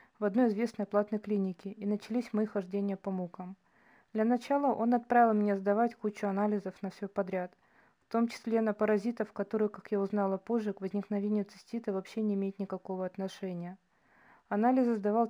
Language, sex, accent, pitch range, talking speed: Russian, female, native, 195-220 Hz, 165 wpm